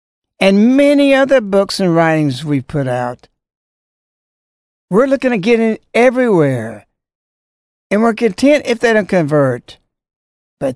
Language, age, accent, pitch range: English, 60-79, American, 145-210 Hz